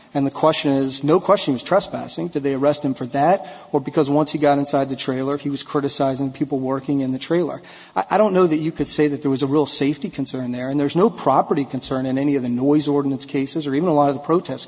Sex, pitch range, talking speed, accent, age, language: male, 135-155 Hz, 275 wpm, American, 40-59, English